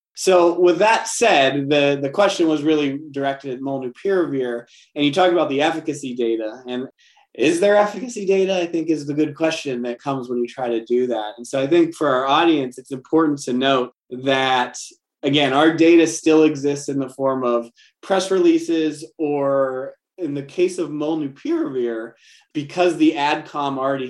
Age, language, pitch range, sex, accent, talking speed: 20-39, English, 125-155 Hz, male, American, 175 wpm